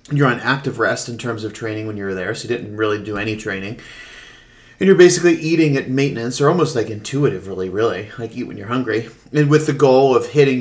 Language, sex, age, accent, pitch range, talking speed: English, male, 30-49, American, 110-140 Hz, 225 wpm